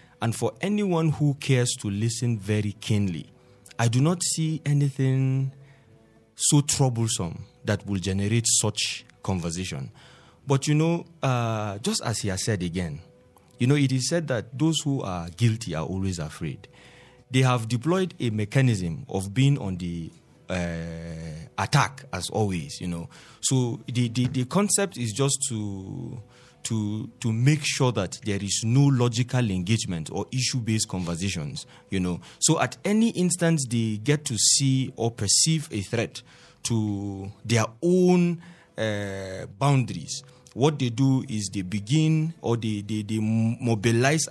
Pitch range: 105-135 Hz